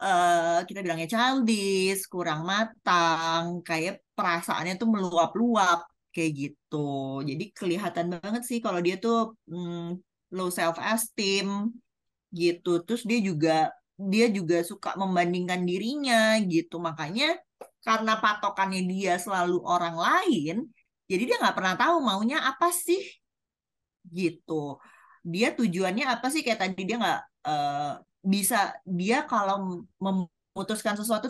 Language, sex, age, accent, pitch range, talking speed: Indonesian, female, 20-39, native, 175-230 Hz, 120 wpm